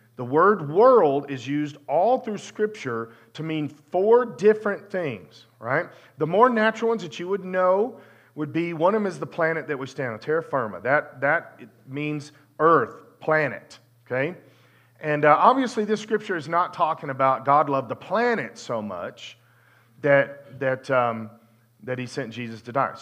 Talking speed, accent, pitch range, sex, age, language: 170 wpm, American, 130-200 Hz, male, 40-59, English